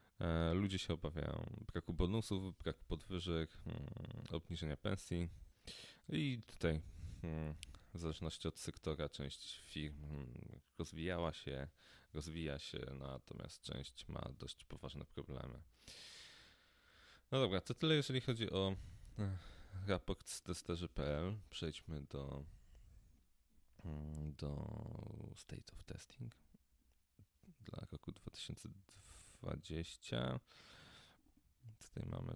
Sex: male